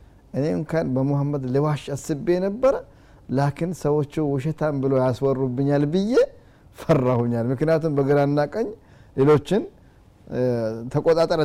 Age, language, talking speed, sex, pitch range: 20-39, Amharic, 90 wpm, male, 115-155 Hz